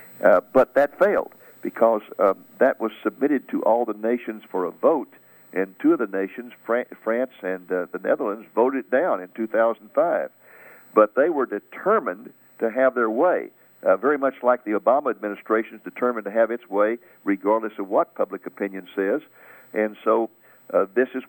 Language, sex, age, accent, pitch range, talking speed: English, male, 60-79, American, 105-125 Hz, 175 wpm